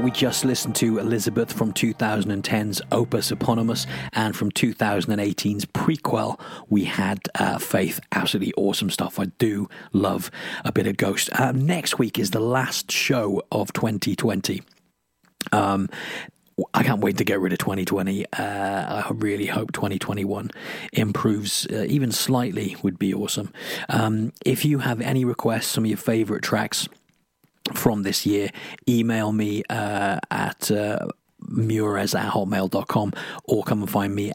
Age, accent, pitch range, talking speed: 40-59, British, 100-120 Hz, 145 wpm